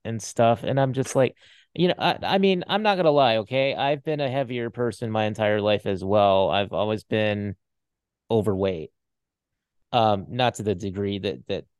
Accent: American